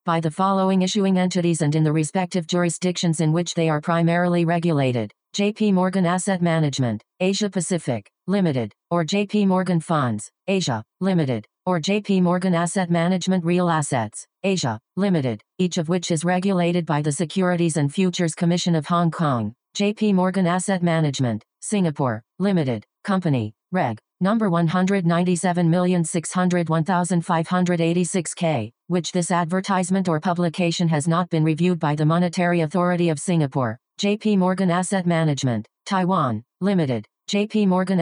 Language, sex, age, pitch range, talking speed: English, female, 40-59, 160-185 Hz, 135 wpm